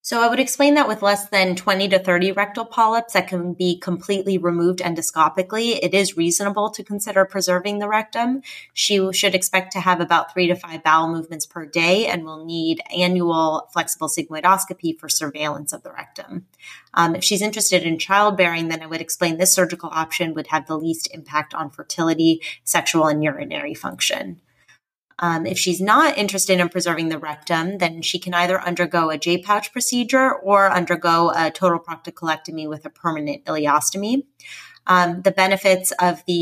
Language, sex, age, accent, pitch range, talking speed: English, female, 30-49, American, 165-190 Hz, 175 wpm